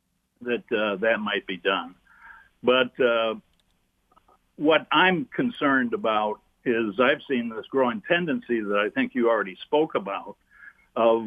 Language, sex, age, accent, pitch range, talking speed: English, male, 60-79, American, 105-125 Hz, 140 wpm